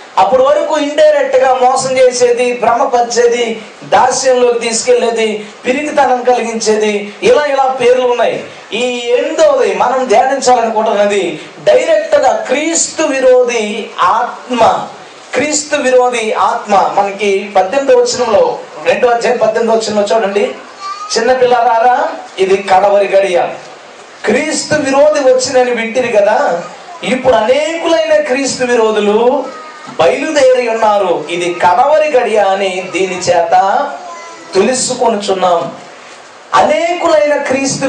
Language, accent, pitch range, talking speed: Telugu, native, 220-290 Hz, 95 wpm